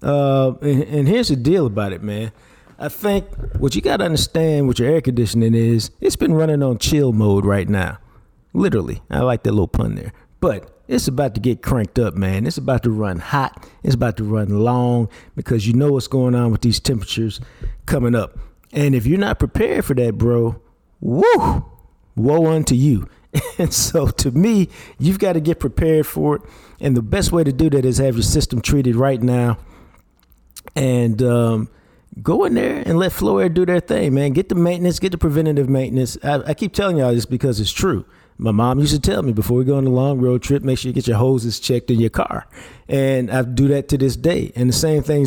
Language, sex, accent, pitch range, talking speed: English, male, American, 115-150 Hz, 220 wpm